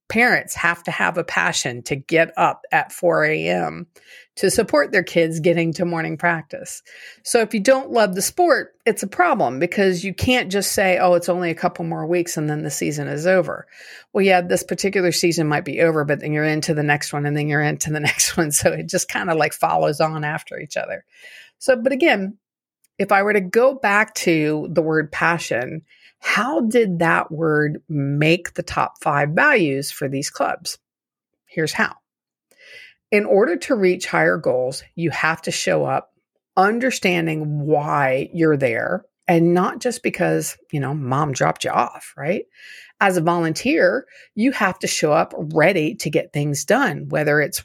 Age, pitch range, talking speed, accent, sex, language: 50-69, 150-200 Hz, 190 wpm, American, female, English